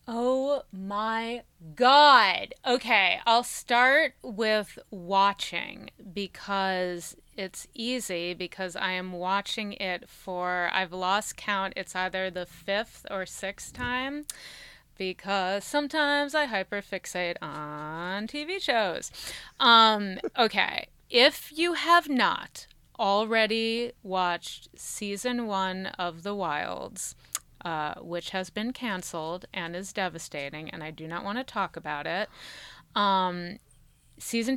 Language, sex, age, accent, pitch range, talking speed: English, female, 30-49, American, 185-230 Hz, 115 wpm